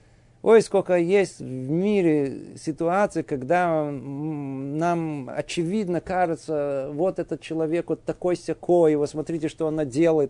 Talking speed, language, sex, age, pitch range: 115 wpm, Russian, male, 50-69, 120-165 Hz